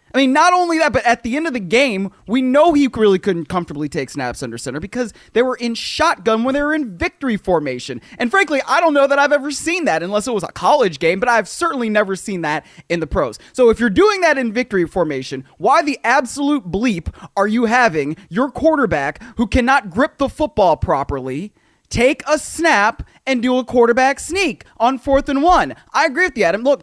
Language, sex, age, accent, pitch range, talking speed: English, male, 20-39, American, 180-275 Hz, 220 wpm